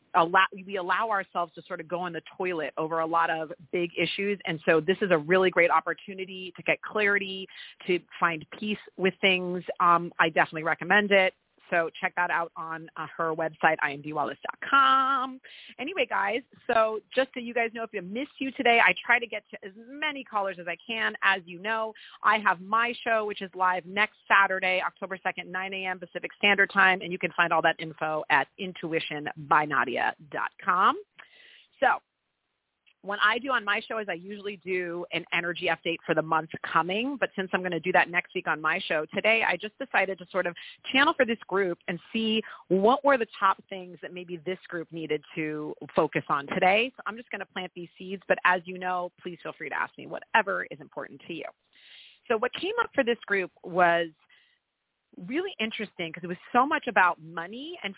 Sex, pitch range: female, 170-210 Hz